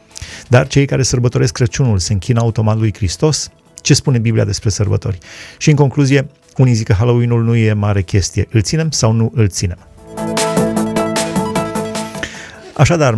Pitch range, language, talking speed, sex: 110-140 Hz, Romanian, 150 wpm, male